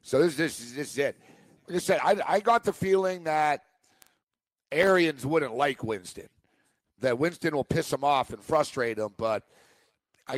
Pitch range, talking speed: 145-175 Hz, 185 wpm